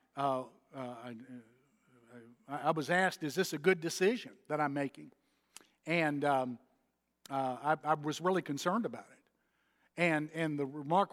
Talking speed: 155 wpm